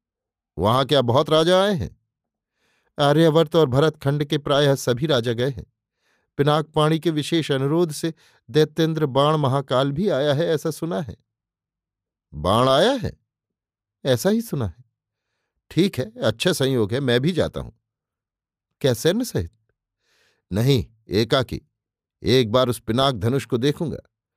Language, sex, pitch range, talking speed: Hindi, male, 115-155 Hz, 140 wpm